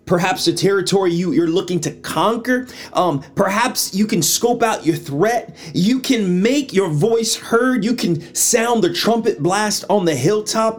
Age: 30-49